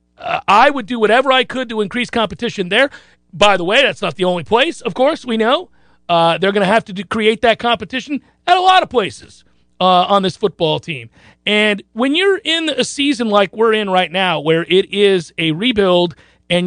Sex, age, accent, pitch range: male, 40-59, American, 170-230 Hz